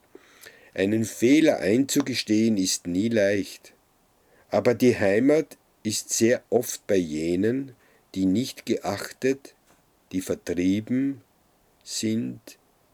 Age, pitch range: 50-69, 90-120 Hz